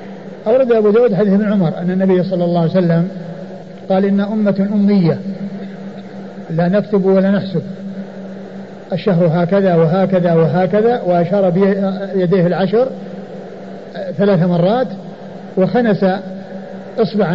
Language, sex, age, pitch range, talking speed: Arabic, male, 50-69, 185-210 Hz, 105 wpm